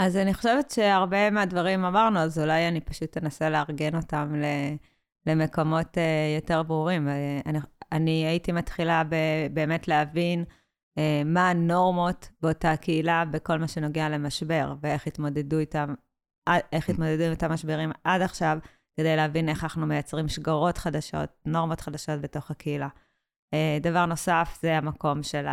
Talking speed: 130 wpm